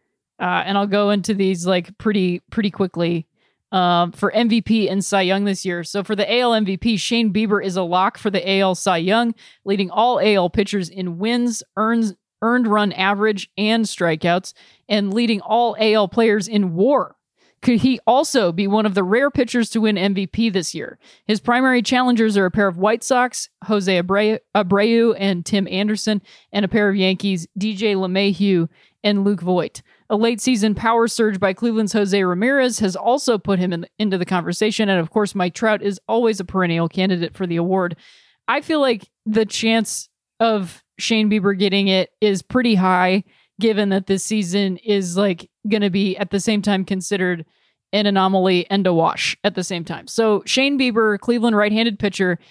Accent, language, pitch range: American, English, 190-220 Hz